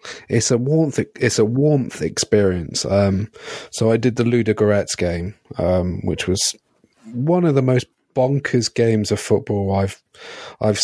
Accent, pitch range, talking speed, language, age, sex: British, 100-125 Hz, 150 wpm, English, 30-49, male